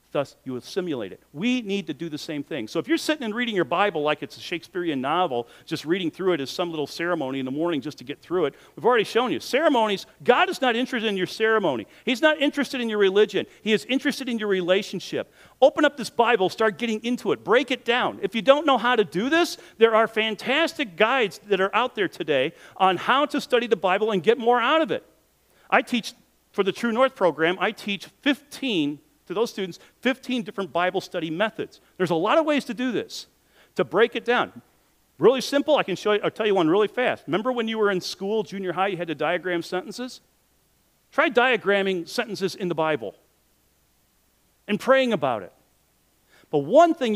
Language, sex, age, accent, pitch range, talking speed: English, male, 50-69, American, 180-250 Hz, 220 wpm